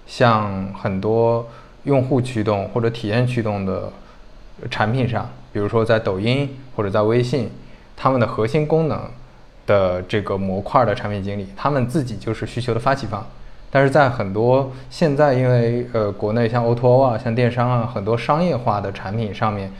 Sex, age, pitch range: male, 20-39, 105-125 Hz